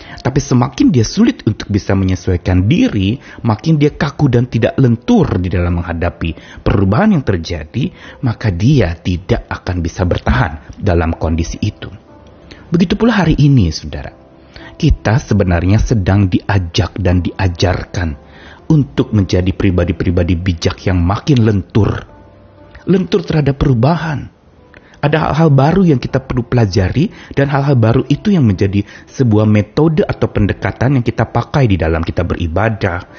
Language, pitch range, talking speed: Indonesian, 90-145 Hz, 135 wpm